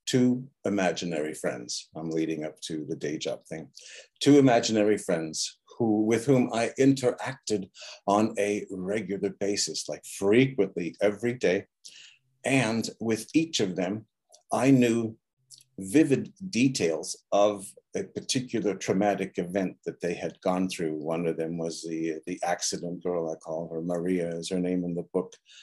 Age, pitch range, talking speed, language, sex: 50-69, 90-110 Hz, 150 wpm, English, male